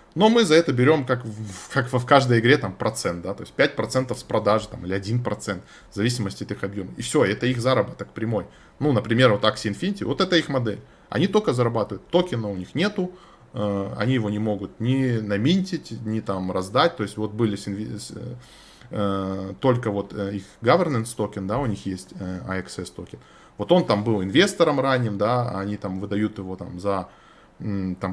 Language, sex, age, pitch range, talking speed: Russian, male, 20-39, 100-135 Hz, 195 wpm